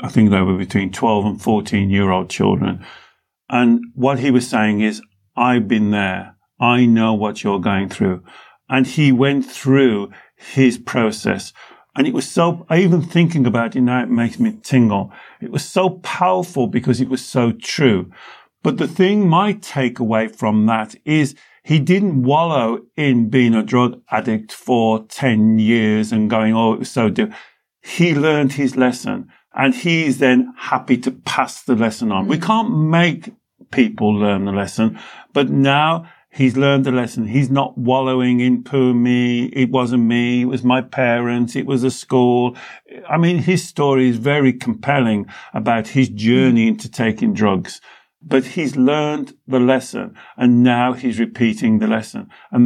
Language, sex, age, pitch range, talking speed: English, male, 50-69, 115-140 Hz, 165 wpm